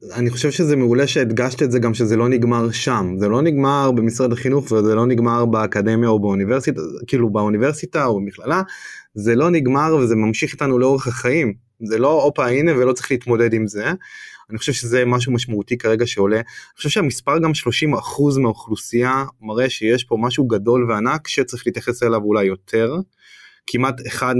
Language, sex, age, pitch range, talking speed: Hebrew, male, 20-39, 115-140 Hz, 175 wpm